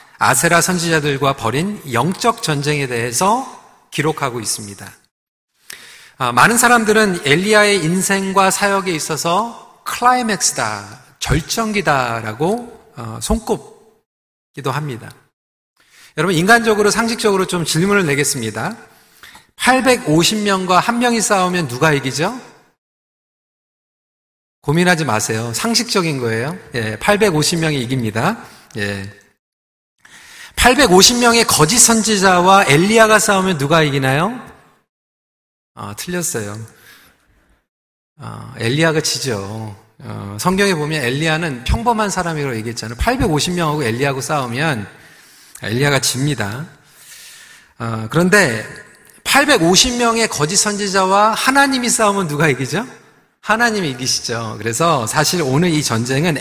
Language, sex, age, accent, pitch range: Korean, male, 40-59, native, 130-205 Hz